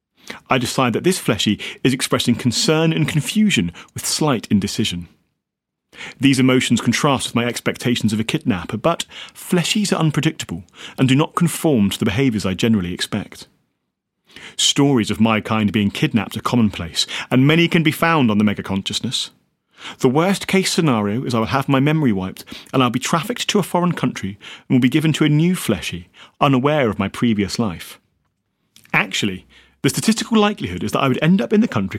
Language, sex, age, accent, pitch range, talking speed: English, male, 40-59, British, 110-160 Hz, 180 wpm